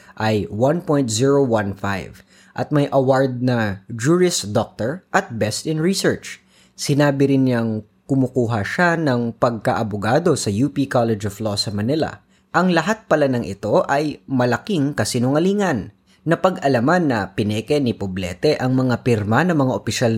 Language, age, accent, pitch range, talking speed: Filipino, 20-39, native, 115-150 Hz, 135 wpm